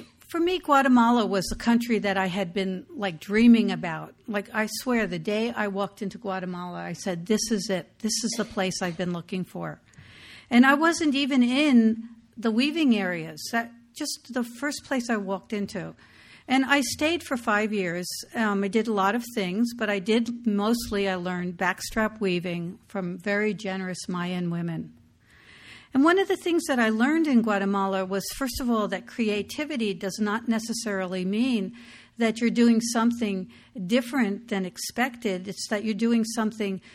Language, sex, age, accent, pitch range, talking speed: English, female, 60-79, American, 195-235 Hz, 175 wpm